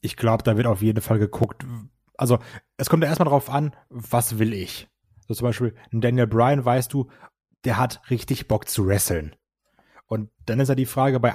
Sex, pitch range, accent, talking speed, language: male, 115-140 Hz, German, 205 wpm, German